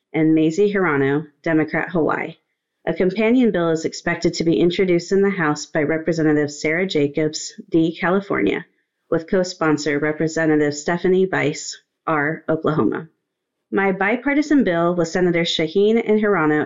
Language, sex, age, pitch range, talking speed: English, female, 30-49, 155-190 Hz, 135 wpm